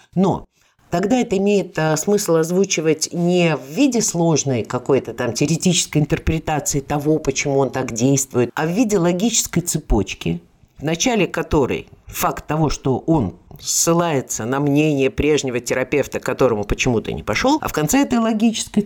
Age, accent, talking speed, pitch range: 50-69, native, 145 wpm, 130-180 Hz